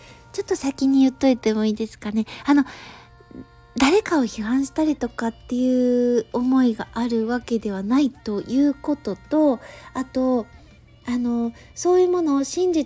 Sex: female